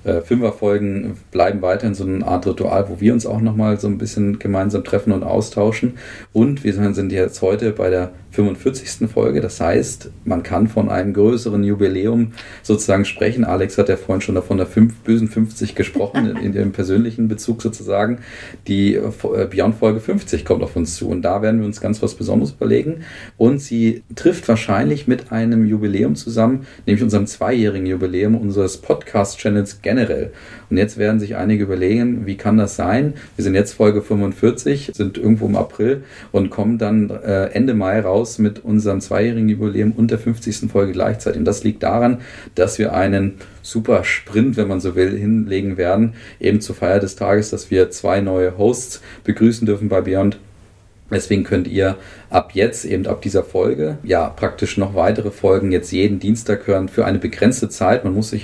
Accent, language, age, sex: German, German, 40-59, male